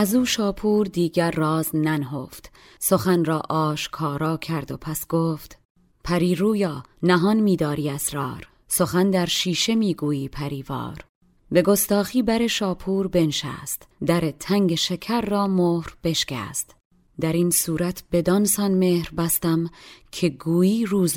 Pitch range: 160-195 Hz